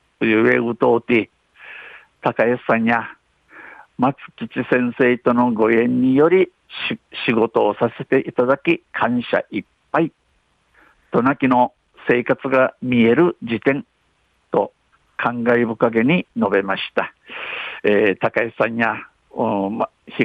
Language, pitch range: Japanese, 115-135 Hz